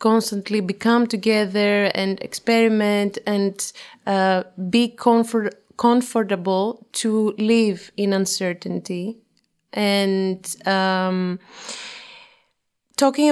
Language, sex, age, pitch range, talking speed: English, female, 30-49, 200-240 Hz, 75 wpm